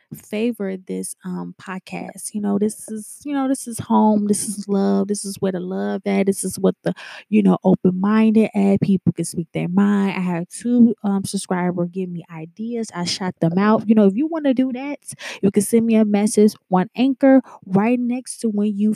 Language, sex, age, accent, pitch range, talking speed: English, female, 20-39, American, 185-215 Hz, 215 wpm